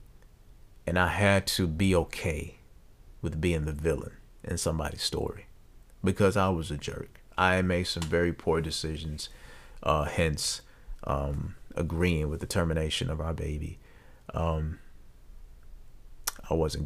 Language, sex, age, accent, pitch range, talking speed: English, male, 30-49, American, 80-95 Hz, 130 wpm